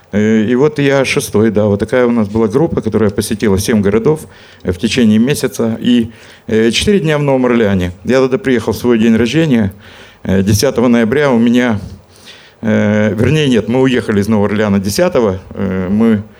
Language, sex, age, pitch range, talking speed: Russian, male, 50-69, 105-135 Hz, 160 wpm